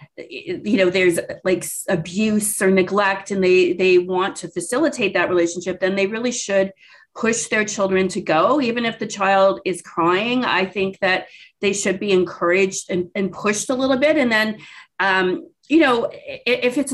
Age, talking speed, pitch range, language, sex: 30-49, 180 wpm, 190-245 Hz, English, female